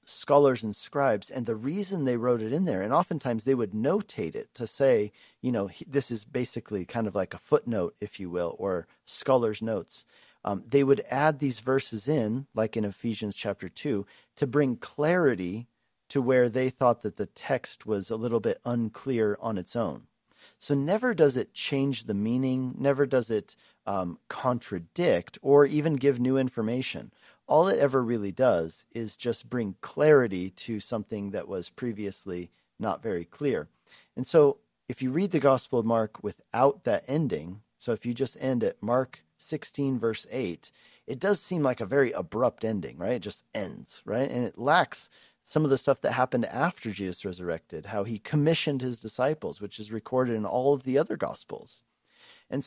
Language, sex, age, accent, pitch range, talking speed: English, male, 40-59, American, 110-140 Hz, 185 wpm